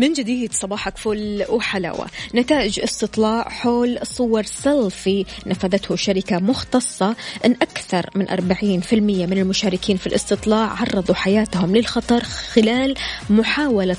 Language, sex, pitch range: Arabic, female, 195-235 Hz